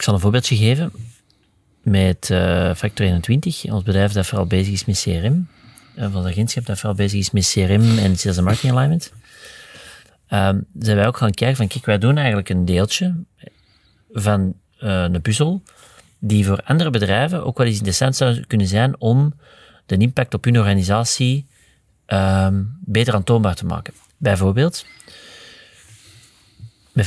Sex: male